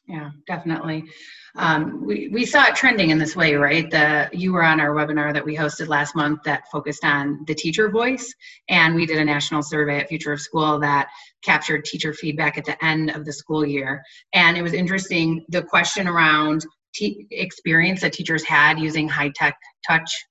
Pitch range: 150-185 Hz